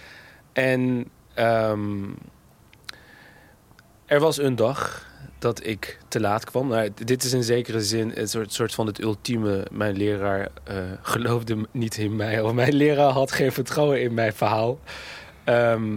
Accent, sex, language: Dutch, male, Dutch